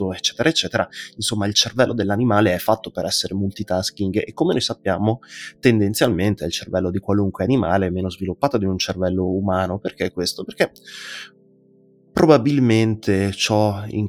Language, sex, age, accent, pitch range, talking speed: Italian, male, 20-39, native, 95-115 Hz, 145 wpm